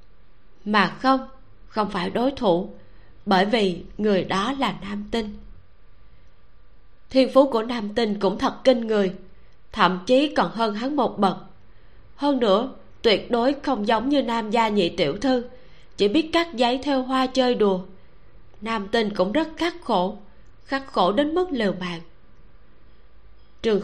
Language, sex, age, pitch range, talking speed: Vietnamese, female, 20-39, 185-255 Hz, 155 wpm